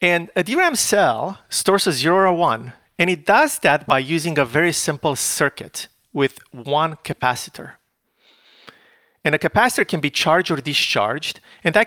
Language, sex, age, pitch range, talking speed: English, male, 40-59, 135-185 Hz, 165 wpm